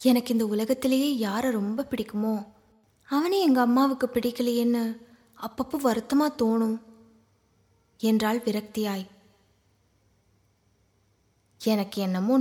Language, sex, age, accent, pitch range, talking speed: Tamil, female, 20-39, native, 180-245 Hz, 75 wpm